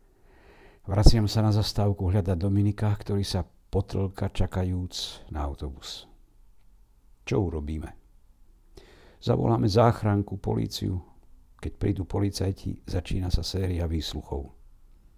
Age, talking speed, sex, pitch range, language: 60-79, 95 wpm, male, 85-105 Hz, Slovak